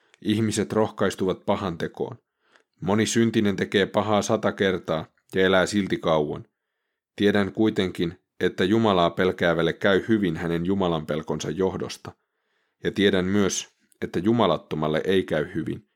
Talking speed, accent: 125 wpm, native